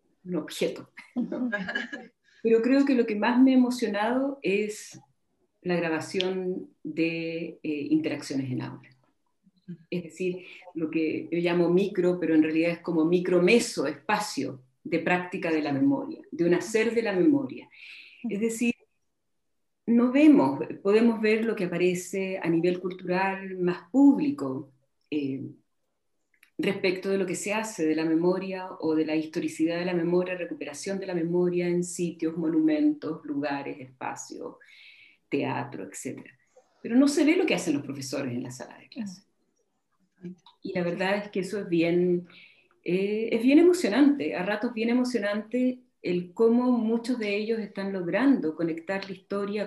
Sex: female